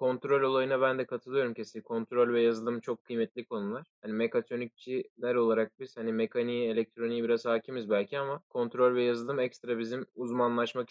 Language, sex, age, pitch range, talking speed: Turkish, male, 20-39, 125-155 Hz, 160 wpm